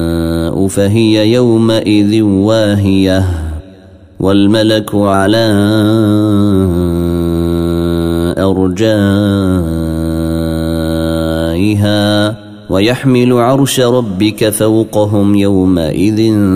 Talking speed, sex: 40 wpm, male